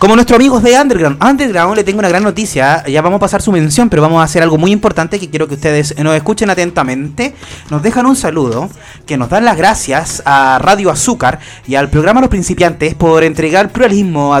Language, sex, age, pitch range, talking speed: Spanish, male, 30-49, 155-220 Hz, 215 wpm